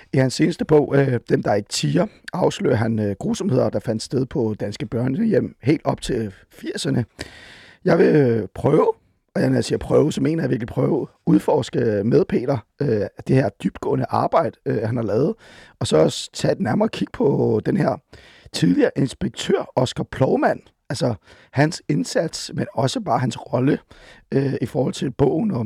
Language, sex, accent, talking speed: Danish, male, native, 165 wpm